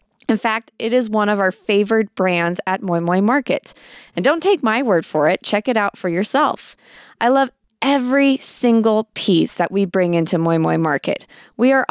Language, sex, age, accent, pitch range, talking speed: English, female, 20-39, American, 190-255 Hz, 195 wpm